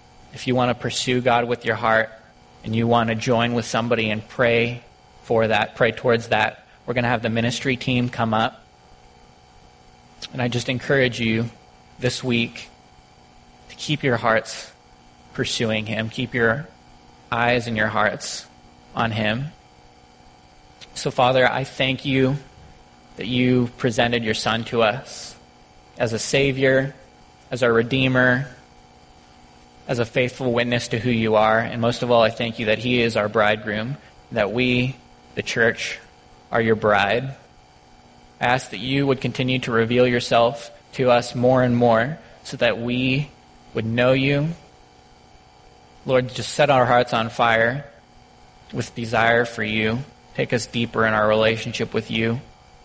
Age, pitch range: 20-39, 105-125 Hz